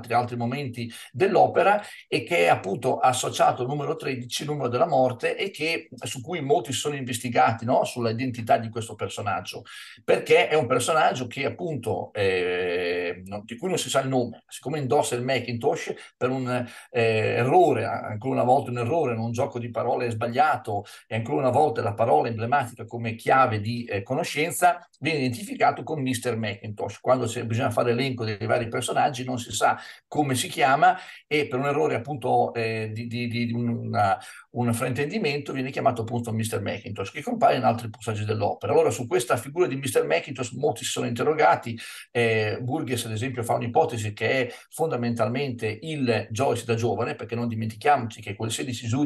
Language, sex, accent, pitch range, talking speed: Italian, male, native, 115-140 Hz, 175 wpm